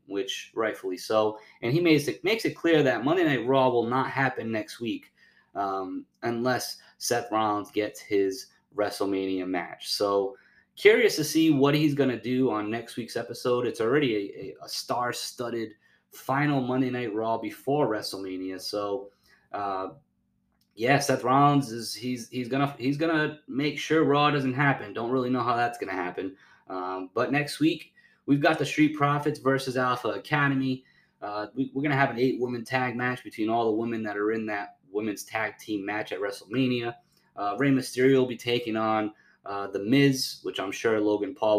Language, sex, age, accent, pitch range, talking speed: English, male, 20-39, American, 105-135 Hz, 185 wpm